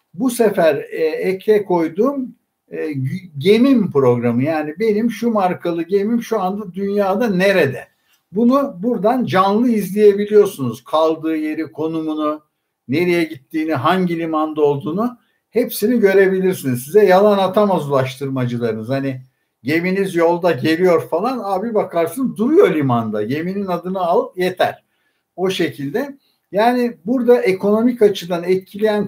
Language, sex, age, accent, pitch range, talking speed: Turkish, male, 60-79, native, 160-215 Hz, 110 wpm